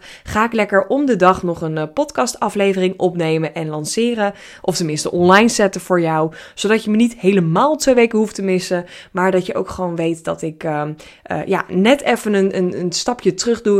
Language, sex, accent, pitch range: Dutch, female, Dutch, 175-225 Hz